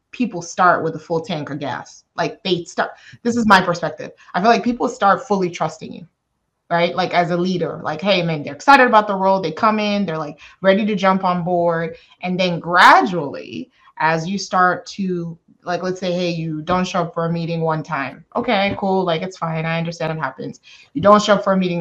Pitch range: 160-195 Hz